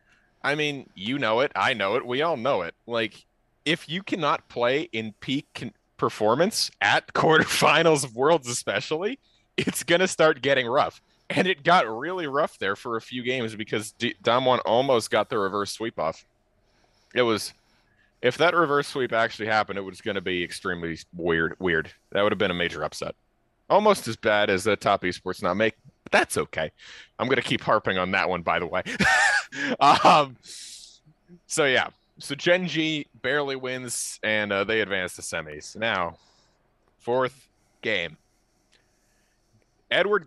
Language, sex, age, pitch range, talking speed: English, male, 30-49, 105-140 Hz, 170 wpm